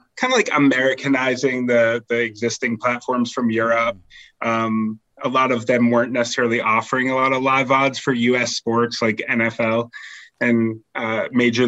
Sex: male